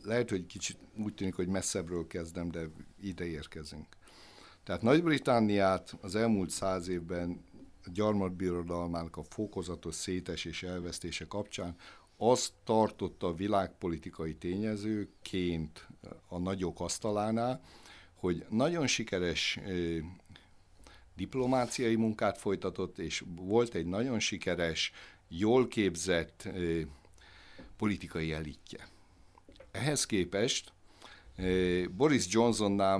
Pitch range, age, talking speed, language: 85-105 Hz, 60-79, 95 wpm, Hungarian